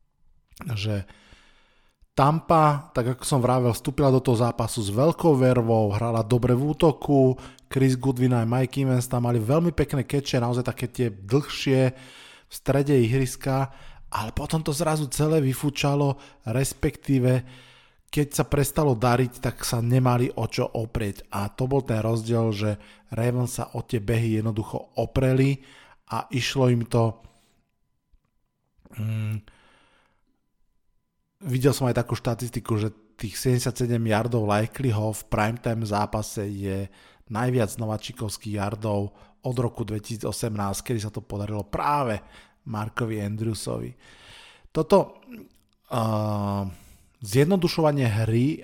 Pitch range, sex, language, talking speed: 110-130 Hz, male, Slovak, 125 wpm